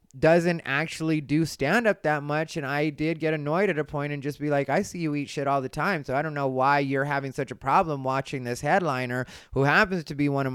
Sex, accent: male, American